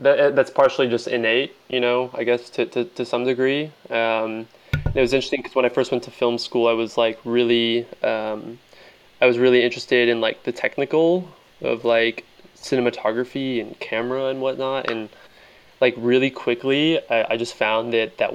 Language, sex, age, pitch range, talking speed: English, male, 20-39, 115-130 Hz, 180 wpm